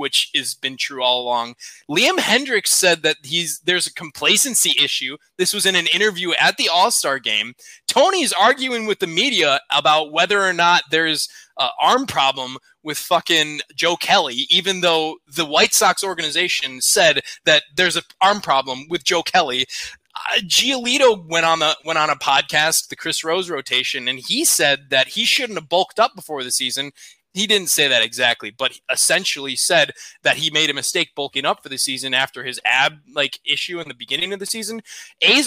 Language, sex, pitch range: English, male, 150-205 Hz